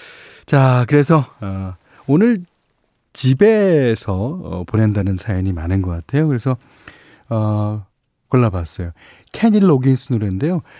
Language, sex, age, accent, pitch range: Korean, male, 40-59, native, 95-145 Hz